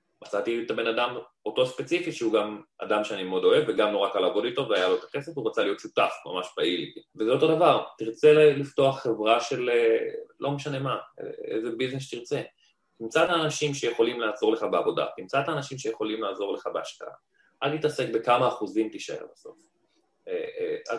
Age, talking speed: 20-39, 175 wpm